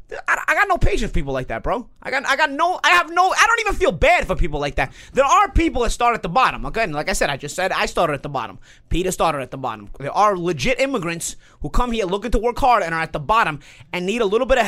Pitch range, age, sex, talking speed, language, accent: 180-275 Hz, 30-49, male, 305 wpm, English, American